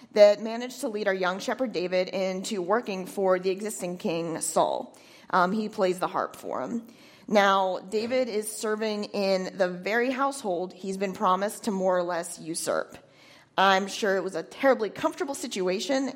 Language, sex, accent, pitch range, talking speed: English, female, American, 185-225 Hz, 170 wpm